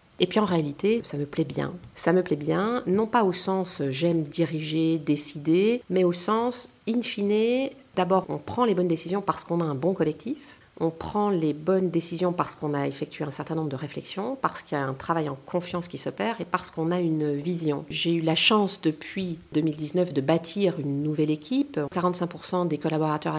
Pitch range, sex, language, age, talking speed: 155-195 Hz, female, French, 40-59, 205 wpm